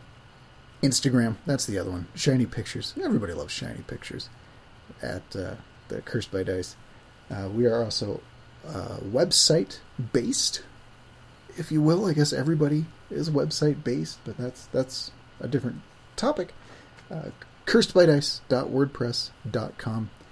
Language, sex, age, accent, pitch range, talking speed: English, male, 30-49, American, 110-145 Hz, 125 wpm